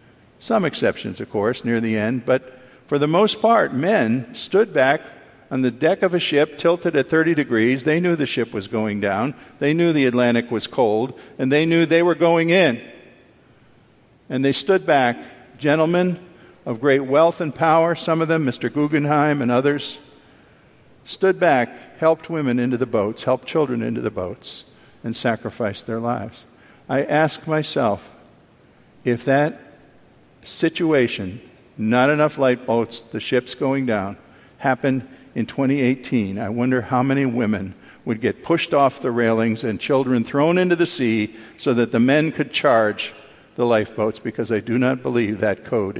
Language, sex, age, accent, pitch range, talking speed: English, male, 50-69, American, 115-150 Hz, 165 wpm